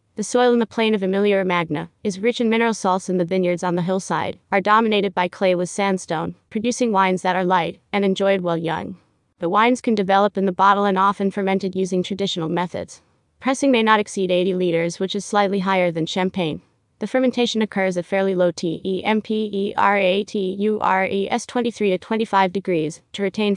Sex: female